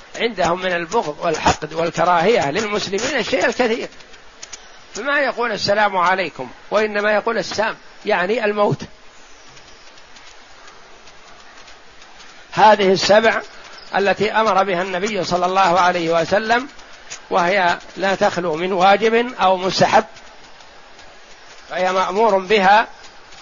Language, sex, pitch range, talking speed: Arabic, male, 175-225 Hz, 95 wpm